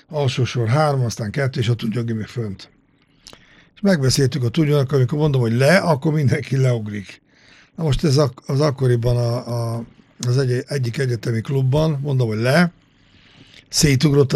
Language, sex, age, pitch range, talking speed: Hungarian, male, 60-79, 120-145 Hz, 160 wpm